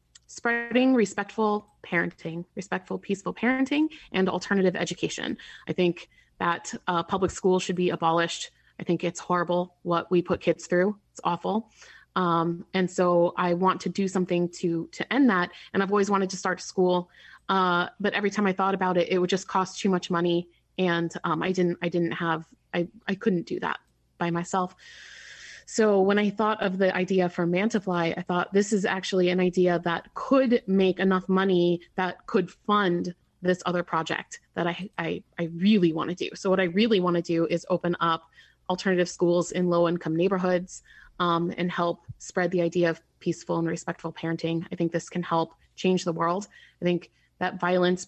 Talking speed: 185 wpm